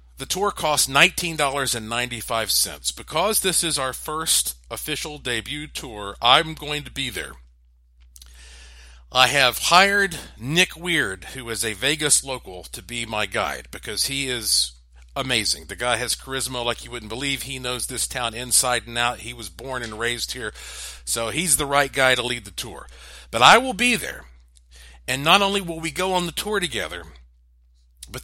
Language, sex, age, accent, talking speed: English, male, 50-69, American, 170 wpm